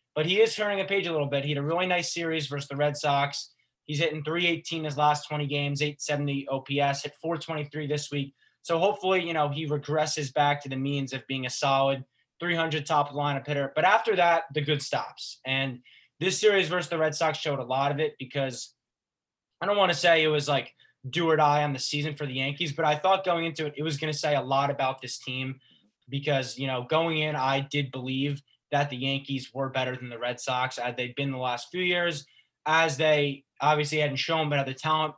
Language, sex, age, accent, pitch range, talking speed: English, male, 20-39, American, 135-160 Hz, 230 wpm